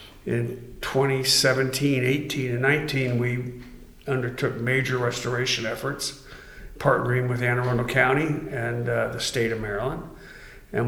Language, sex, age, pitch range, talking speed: English, male, 50-69, 120-145 Hz, 120 wpm